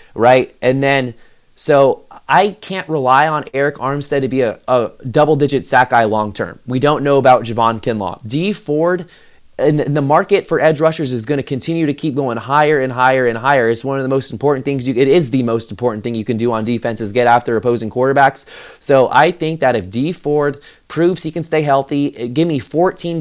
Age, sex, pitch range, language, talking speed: 20-39, male, 125-150 Hz, English, 220 wpm